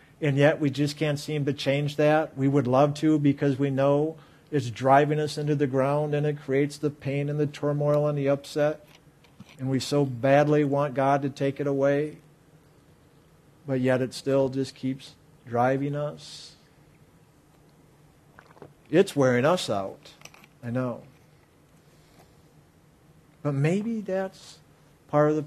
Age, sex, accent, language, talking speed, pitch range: 50-69, male, American, English, 150 wpm, 140-160 Hz